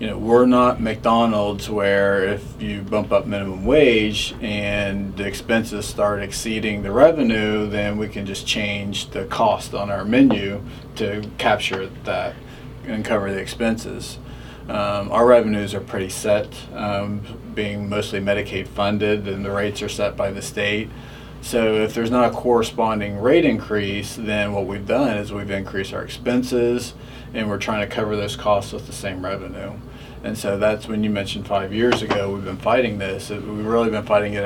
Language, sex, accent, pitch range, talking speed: English, male, American, 100-115 Hz, 175 wpm